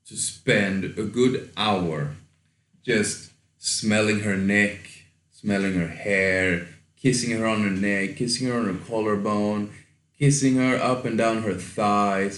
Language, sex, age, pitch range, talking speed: English, male, 20-39, 95-120 Hz, 140 wpm